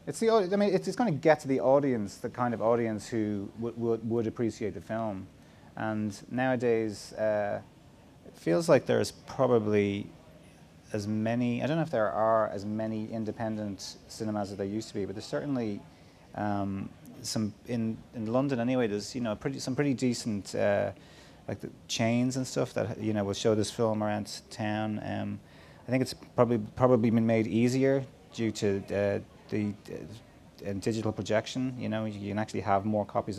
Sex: male